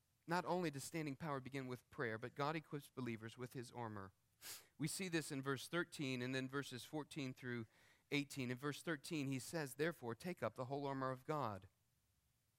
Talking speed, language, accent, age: 190 wpm, English, American, 40-59